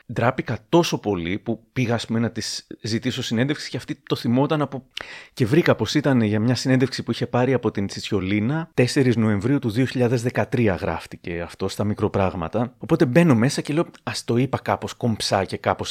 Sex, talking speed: male, 185 wpm